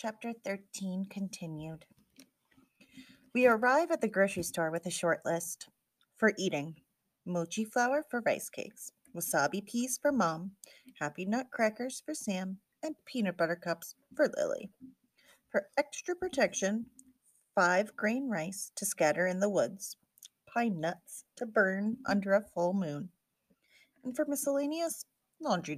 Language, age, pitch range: English, 30-49, 175-260 Hz